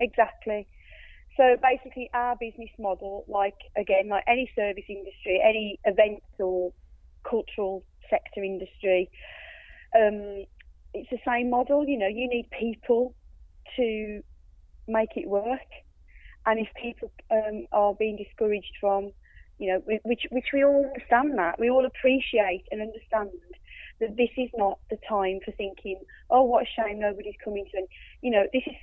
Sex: female